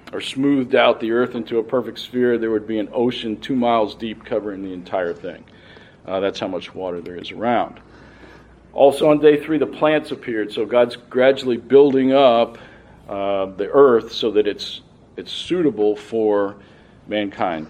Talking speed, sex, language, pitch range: 175 wpm, male, English, 105-125 Hz